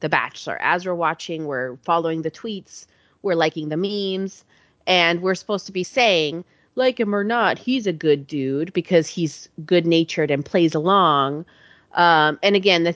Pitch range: 155-190 Hz